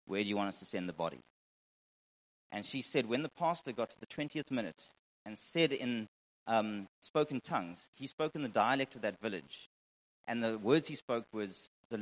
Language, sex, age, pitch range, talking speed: English, male, 40-59, 100-130 Hz, 205 wpm